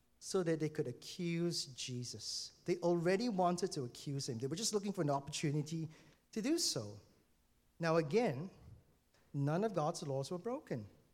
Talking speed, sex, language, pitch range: 160 wpm, male, English, 140-200 Hz